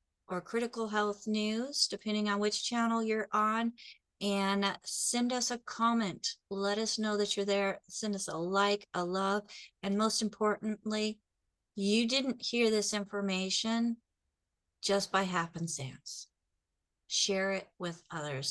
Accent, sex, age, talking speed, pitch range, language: American, female, 40-59, 135 wpm, 195-245 Hz, English